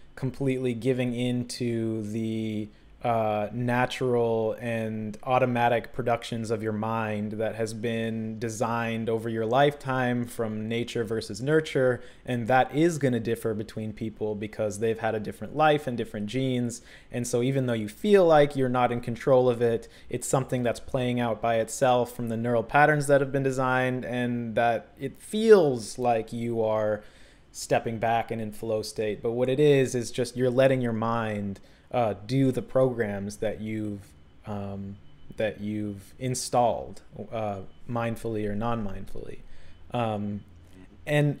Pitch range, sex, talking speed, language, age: 110-130 Hz, male, 155 wpm, English, 20-39